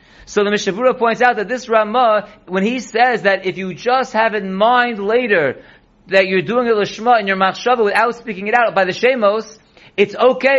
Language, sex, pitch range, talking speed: English, male, 200-240 Hz, 205 wpm